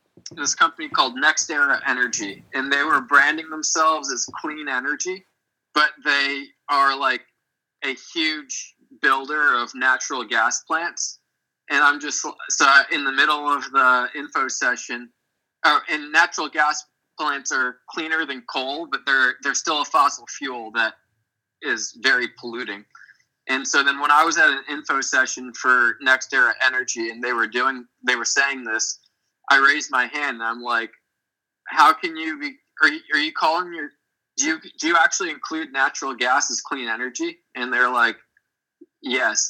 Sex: male